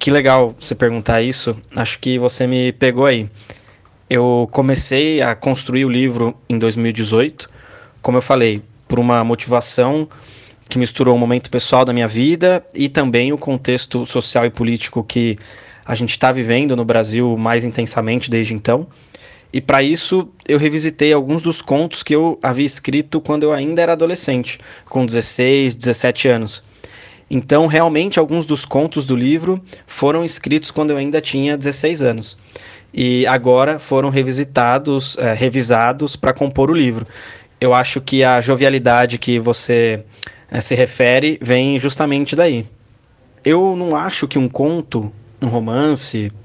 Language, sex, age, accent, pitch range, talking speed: Portuguese, male, 20-39, Brazilian, 120-145 Hz, 150 wpm